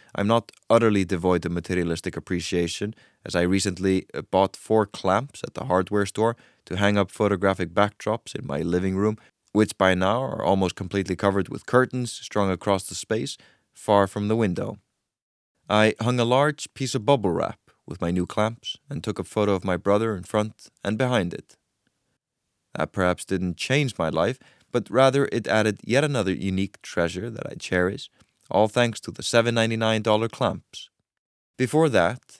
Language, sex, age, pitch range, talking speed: English, male, 20-39, 95-115 Hz, 170 wpm